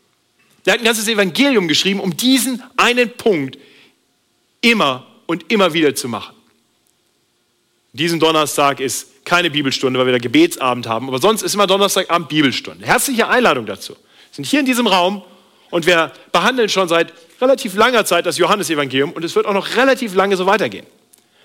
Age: 40-59